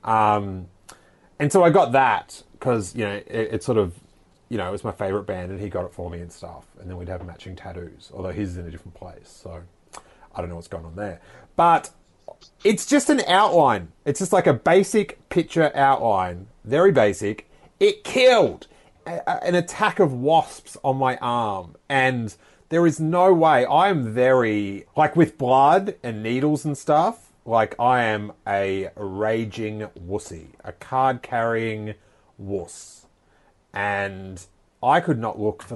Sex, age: male, 30-49